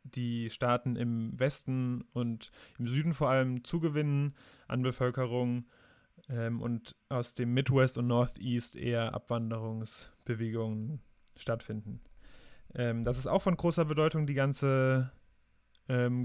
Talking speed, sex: 120 wpm, male